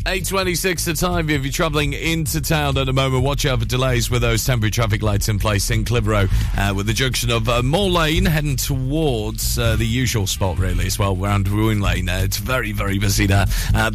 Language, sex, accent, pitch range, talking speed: English, male, British, 105-130 Hz, 210 wpm